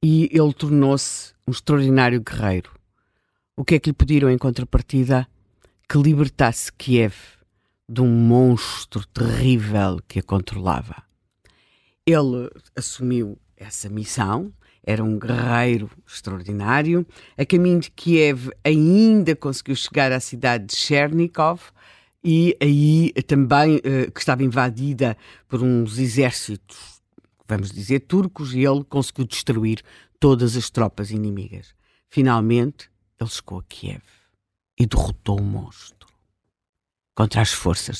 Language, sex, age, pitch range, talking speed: Portuguese, female, 50-69, 105-145 Hz, 120 wpm